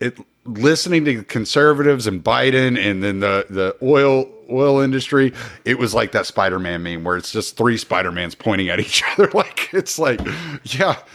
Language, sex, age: English, male, 40-59